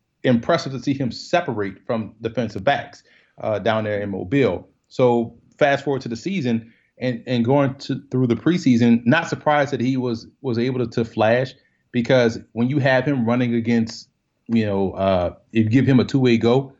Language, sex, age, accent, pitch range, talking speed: English, male, 30-49, American, 115-135 Hz, 185 wpm